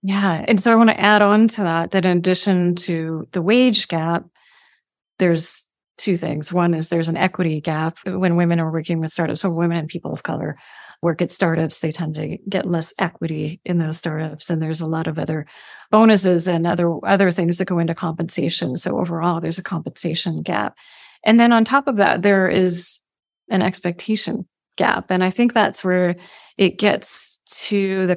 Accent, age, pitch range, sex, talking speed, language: American, 30-49, 170-195 Hz, female, 195 wpm, English